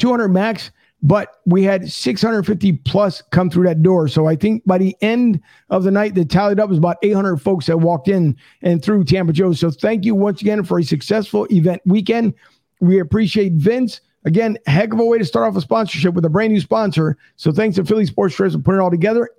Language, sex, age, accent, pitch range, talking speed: English, male, 50-69, American, 170-210 Hz, 230 wpm